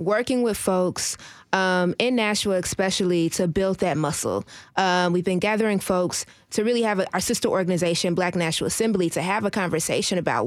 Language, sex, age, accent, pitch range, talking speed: English, female, 20-39, American, 175-210 Hz, 180 wpm